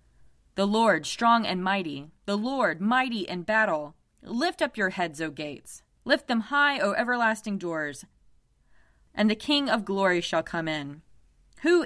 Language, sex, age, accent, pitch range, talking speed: English, female, 20-39, American, 145-240 Hz, 155 wpm